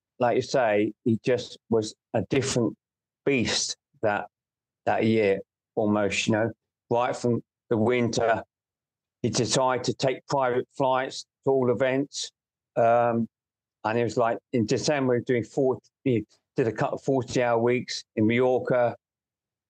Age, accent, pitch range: 40-59, British, 110-130 Hz